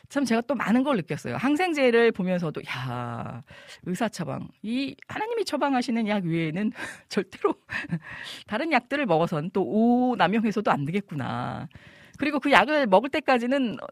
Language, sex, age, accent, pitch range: Korean, female, 40-59, native, 155-245 Hz